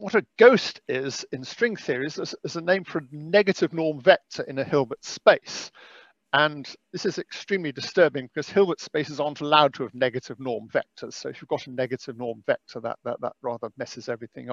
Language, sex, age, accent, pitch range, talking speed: English, male, 50-69, British, 135-190 Hz, 205 wpm